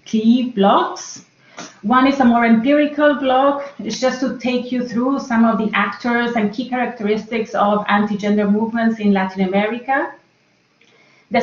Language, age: English, 30-49